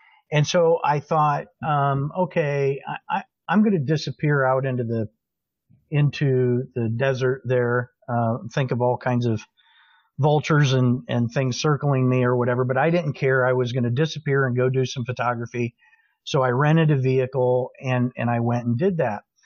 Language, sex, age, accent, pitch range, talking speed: English, male, 50-69, American, 130-165 Hz, 180 wpm